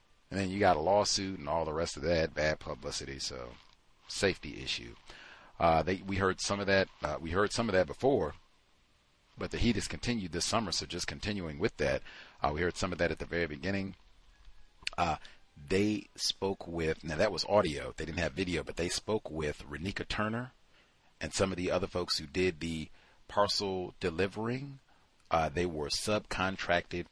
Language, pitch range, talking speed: English, 85-110 Hz, 190 wpm